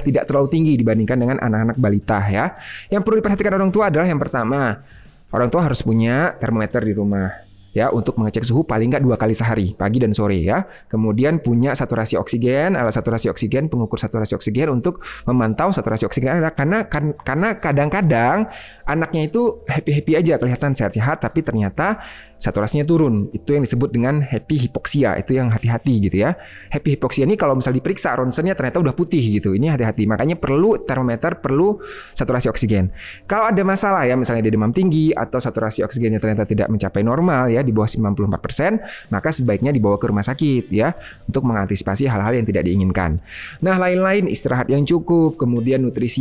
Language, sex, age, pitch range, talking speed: Indonesian, male, 20-39, 110-155 Hz, 175 wpm